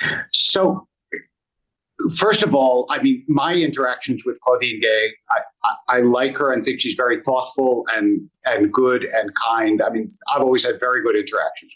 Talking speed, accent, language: 170 wpm, American, English